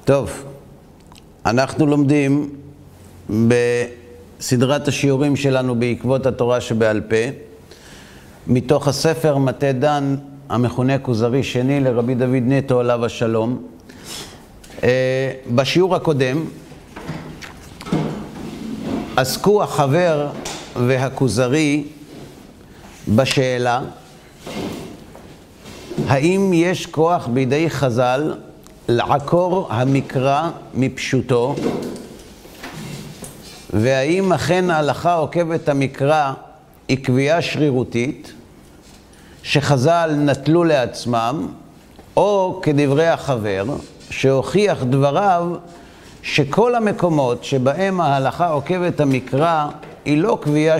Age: 50-69